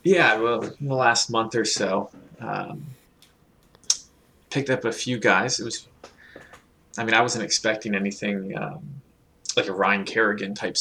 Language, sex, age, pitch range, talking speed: English, male, 20-39, 100-125 Hz, 150 wpm